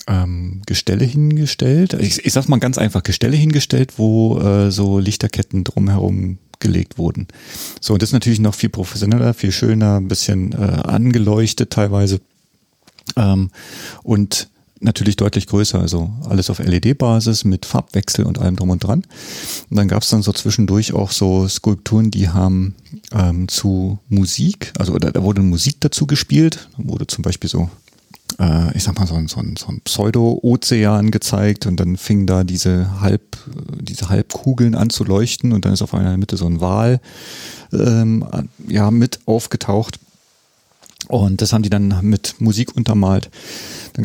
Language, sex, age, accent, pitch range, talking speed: German, male, 40-59, German, 95-115 Hz, 160 wpm